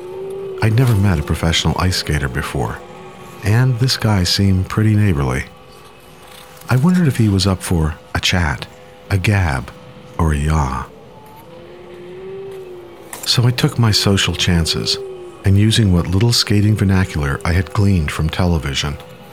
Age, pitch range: 50-69, 85-120 Hz